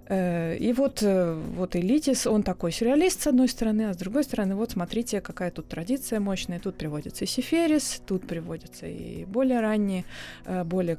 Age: 20-39